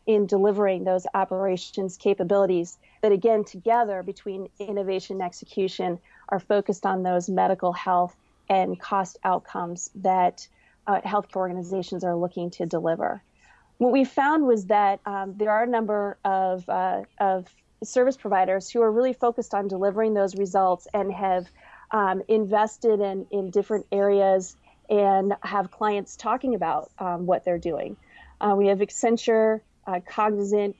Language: English